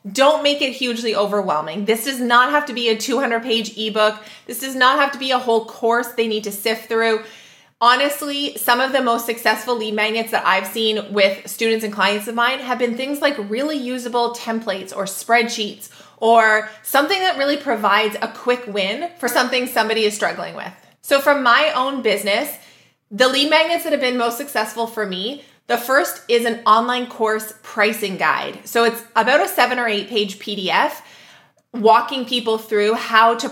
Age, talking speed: 20-39, 190 wpm